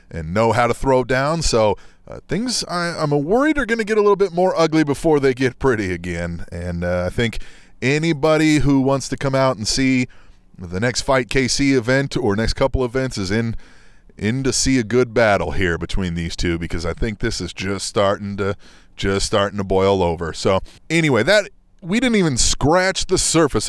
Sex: male